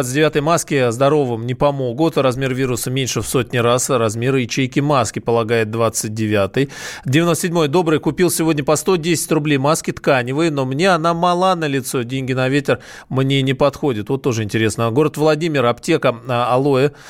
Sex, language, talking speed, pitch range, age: male, Russian, 155 wpm, 120-150 Hz, 20-39